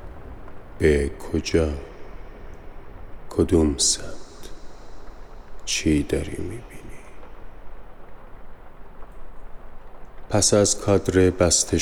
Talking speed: 55 wpm